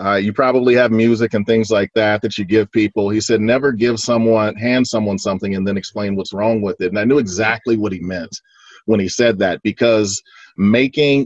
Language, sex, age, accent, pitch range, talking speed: English, male, 40-59, American, 105-130 Hz, 220 wpm